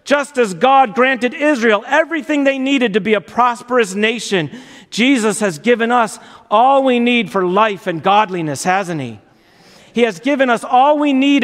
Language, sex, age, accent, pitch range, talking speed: English, male, 40-59, American, 195-255 Hz, 175 wpm